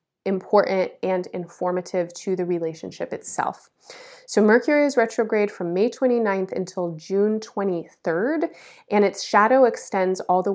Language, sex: English, female